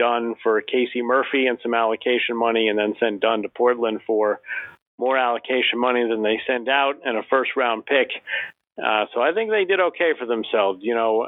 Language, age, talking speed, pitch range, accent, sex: English, 40-59, 195 wpm, 120-150 Hz, American, male